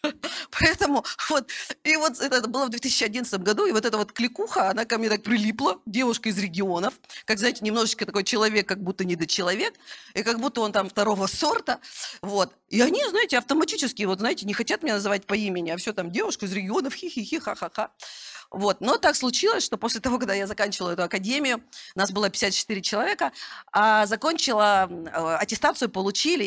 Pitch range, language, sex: 195-255 Hz, Russian, female